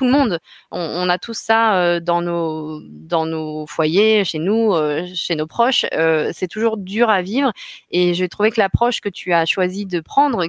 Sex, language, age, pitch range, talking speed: female, French, 20-39, 165-210 Hz, 205 wpm